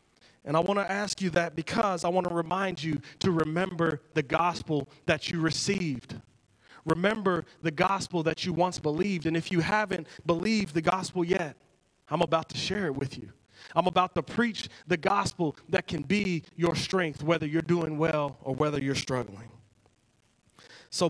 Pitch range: 150-185 Hz